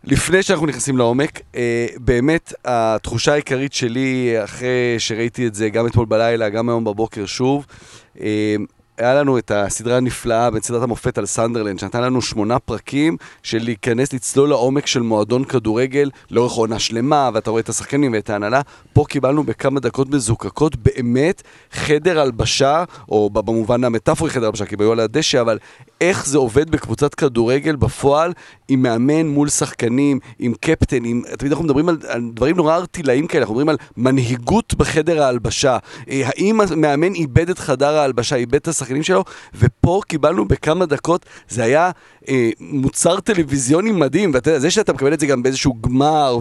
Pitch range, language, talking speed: 120-155 Hz, Hebrew, 165 wpm